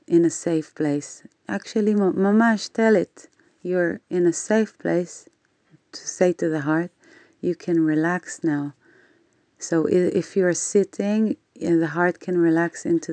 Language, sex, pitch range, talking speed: Hebrew, female, 160-200 Hz, 145 wpm